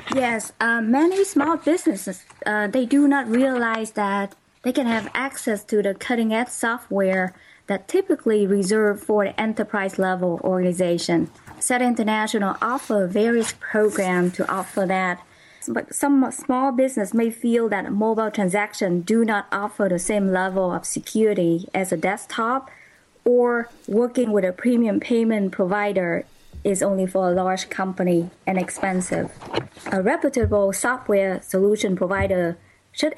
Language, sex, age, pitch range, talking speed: English, female, 20-39, 190-230 Hz, 135 wpm